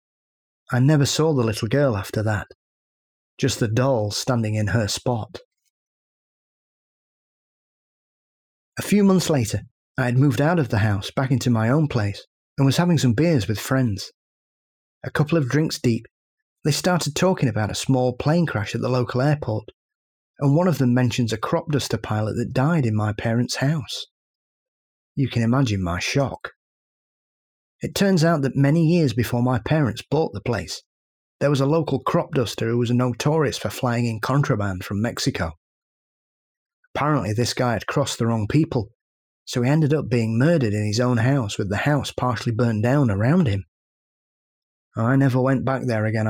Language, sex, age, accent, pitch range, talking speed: English, male, 30-49, British, 110-145 Hz, 175 wpm